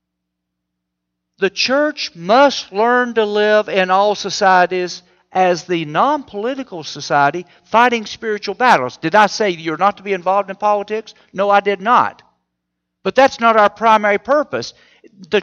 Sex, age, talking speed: male, 60-79, 145 wpm